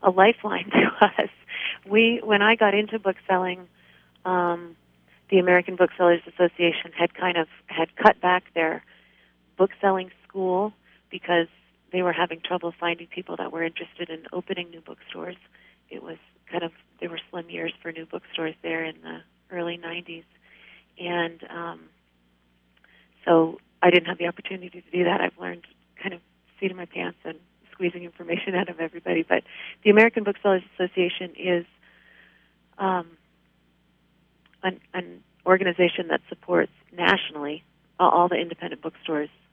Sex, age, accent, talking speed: female, 30-49, American, 150 wpm